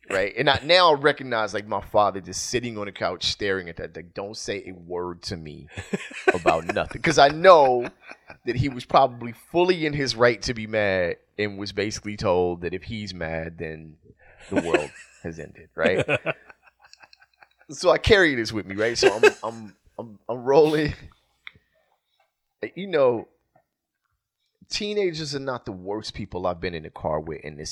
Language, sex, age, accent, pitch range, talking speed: English, male, 30-49, American, 90-135 Hz, 180 wpm